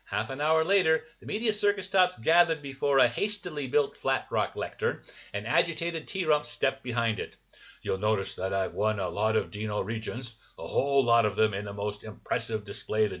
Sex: male